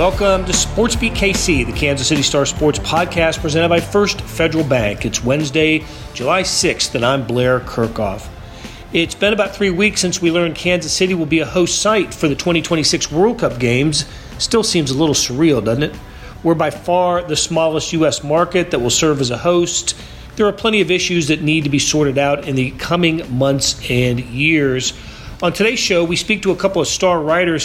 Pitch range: 140-180 Hz